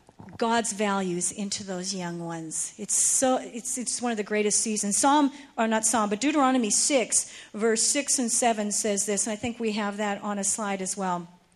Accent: American